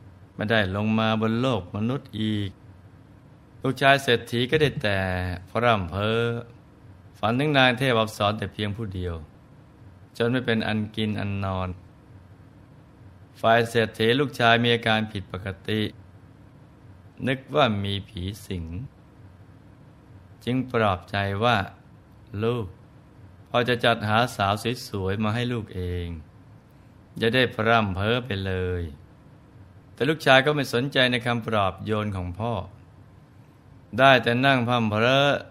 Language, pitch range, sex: Thai, 100-125 Hz, male